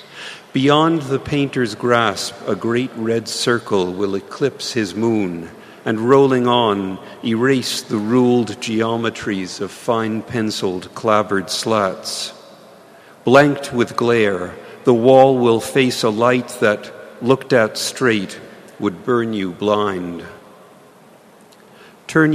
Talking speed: 115 wpm